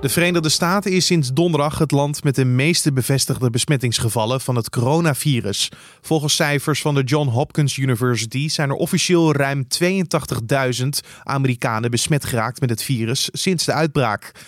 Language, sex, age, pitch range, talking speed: Dutch, male, 20-39, 125-155 Hz, 155 wpm